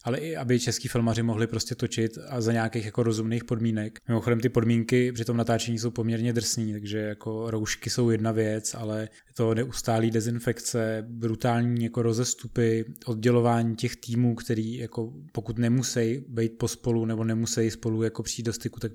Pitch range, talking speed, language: 110-120 Hz, 175 wpm, Czech